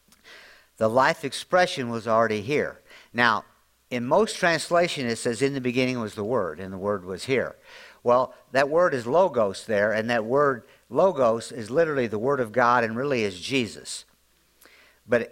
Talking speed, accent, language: 170 wpm, American, English